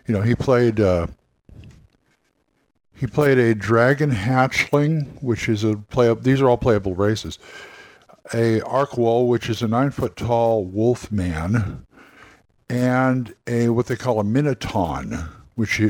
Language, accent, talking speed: English, American, 140 wpm